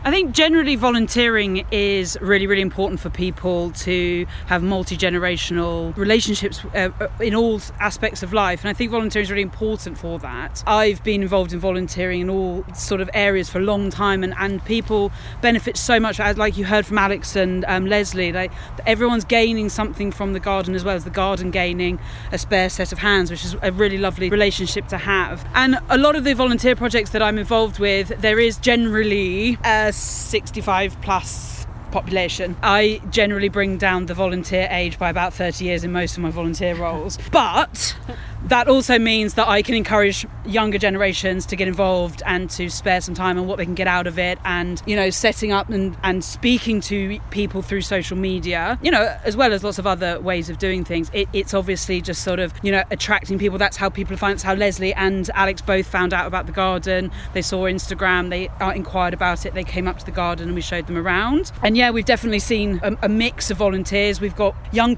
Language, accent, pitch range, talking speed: English, British, 185-215 Hz, 205 wpm